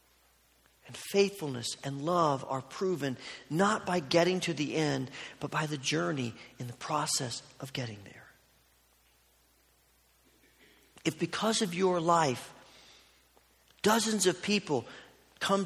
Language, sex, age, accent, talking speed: English, male, 40-59, American, 115 wpm